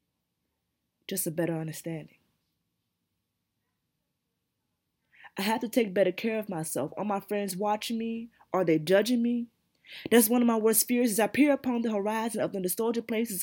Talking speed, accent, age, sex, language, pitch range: 165 wpm, American, 20-39, female, English, 170-205 Hz